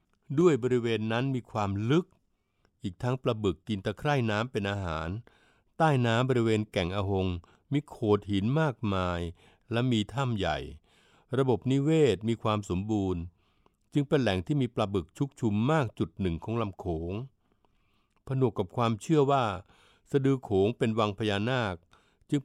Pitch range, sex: 95-125 Hz, male